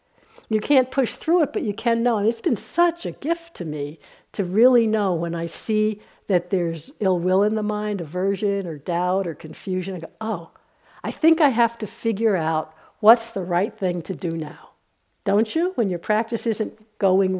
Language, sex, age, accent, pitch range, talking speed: English, female, 60-79, American, 185-250 Hz, 205 wpm